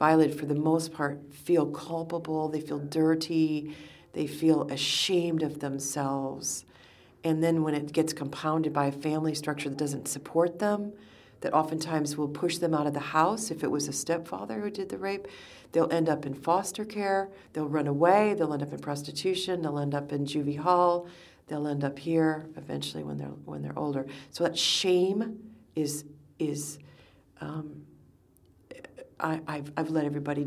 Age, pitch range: 40-59, 140-165 Hz